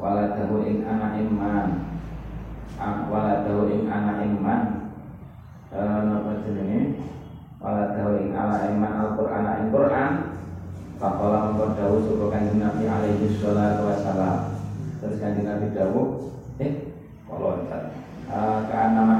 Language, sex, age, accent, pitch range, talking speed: Indonesian, male, 20-39, native, 105-110 Hz, 115 wpm